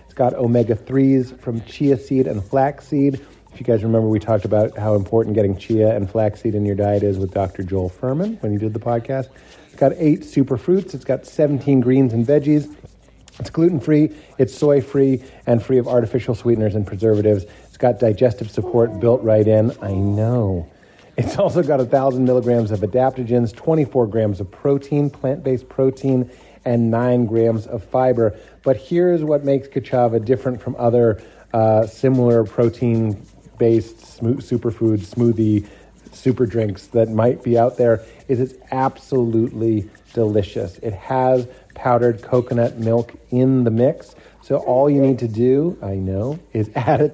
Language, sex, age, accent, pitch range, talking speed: English, male, 30-49, American, 110-130 Hz, 165 wpm